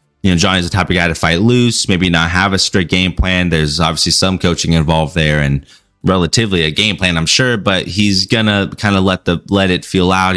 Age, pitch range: 30-49, 80-95 Hz